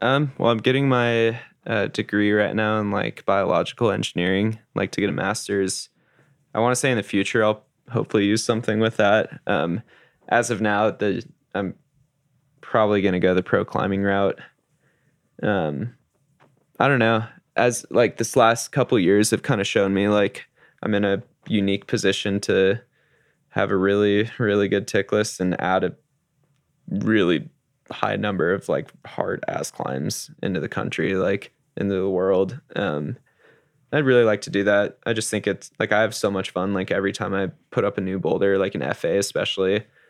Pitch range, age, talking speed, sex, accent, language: 100-115 Hz, 10-29, 185 wpm, male, American, English